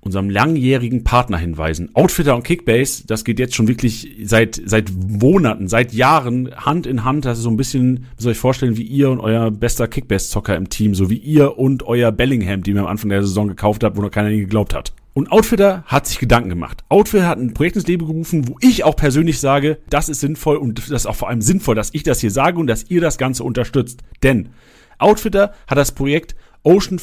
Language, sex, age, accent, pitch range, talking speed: German, male, 40-59, German, 115-165 Hz, 230 wpm